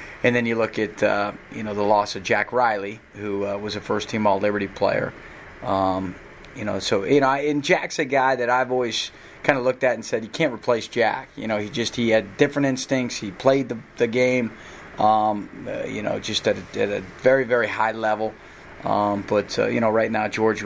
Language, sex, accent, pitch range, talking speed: English, male, American, 105-125 Hz, 225 wpm